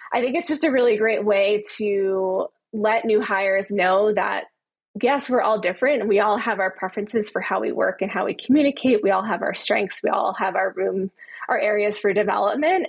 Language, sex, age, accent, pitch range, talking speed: English, female, 20-39, American, 200-235 Hz, 210 wpm